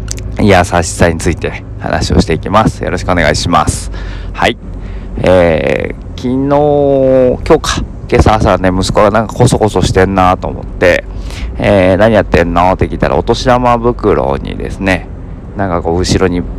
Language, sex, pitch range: Japanese, male, 85-105 Hz